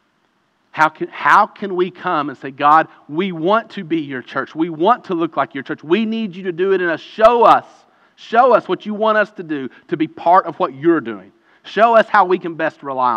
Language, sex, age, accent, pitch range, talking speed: English, male, 40-59, American, 120-195 Hz, 240 wpm